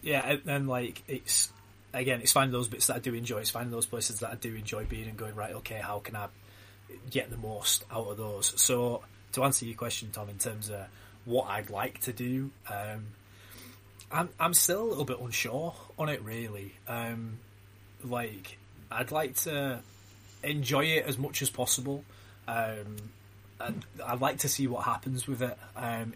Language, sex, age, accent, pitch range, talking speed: English, male, 20-39, British, 105-130 Hz, 190 wpm